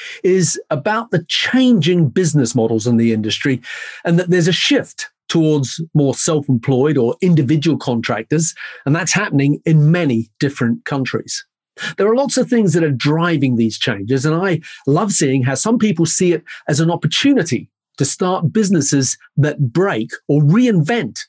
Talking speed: 160 wpm